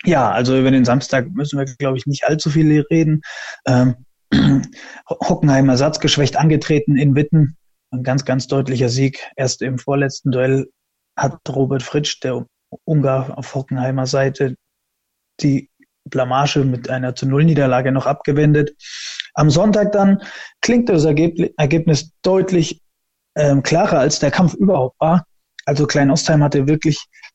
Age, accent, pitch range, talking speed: 20-39, German, 135-155 Hz, 140 wpm